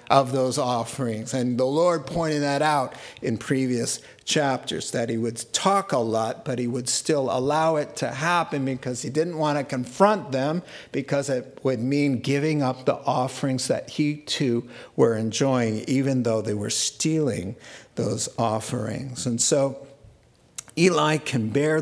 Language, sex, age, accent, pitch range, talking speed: English, male, 50-69, American, 125-155 Hz, 160 wpm